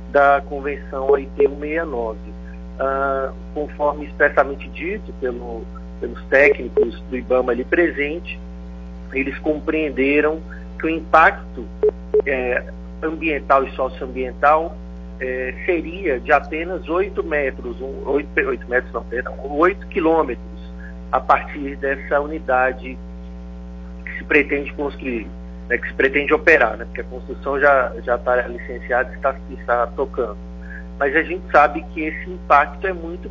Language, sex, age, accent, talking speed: Portuguese, male, 40-59, Brazilian, 130 wpm